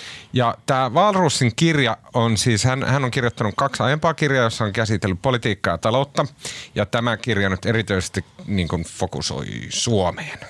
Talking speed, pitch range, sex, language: 155 wpm, 90-120 Hz, male, Finnish